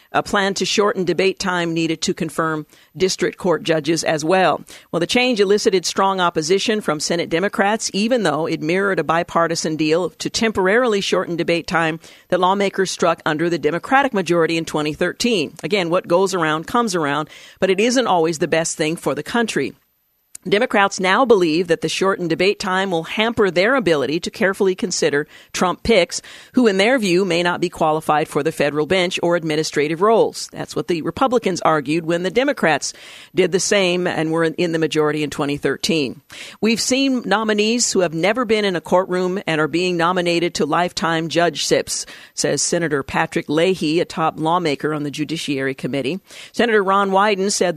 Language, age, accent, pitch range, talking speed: English, 50-69, American, 160-195 Hz, 180 wpm